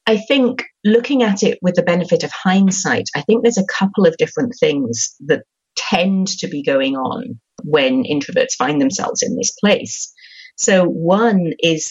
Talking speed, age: 170 wpm, 40-59